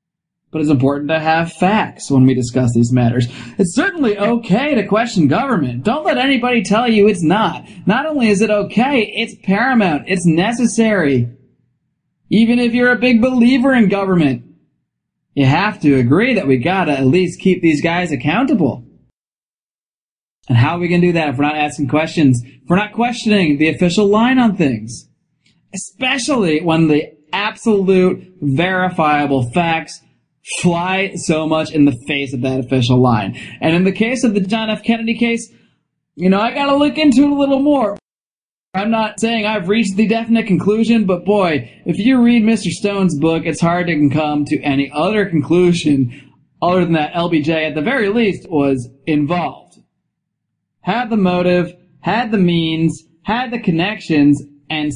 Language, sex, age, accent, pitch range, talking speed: English, male, 20-39, American, 150-220 Hz, 170 wpm